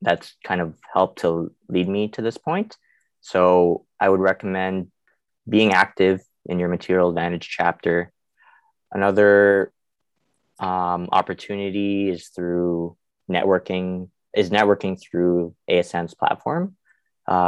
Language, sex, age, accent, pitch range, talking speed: English, male, 20-39, American, 85-100 Hz, 115 wpm